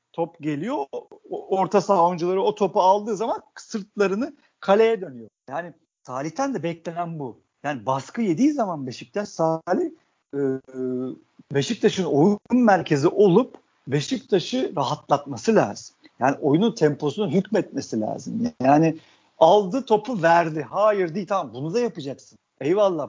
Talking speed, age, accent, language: 120 wpm, 50-69, native, Turkish